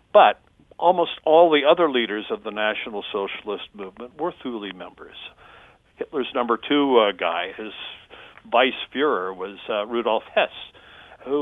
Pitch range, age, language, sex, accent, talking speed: 110-140 Hz, 60-79, English, male, American, 135 wpm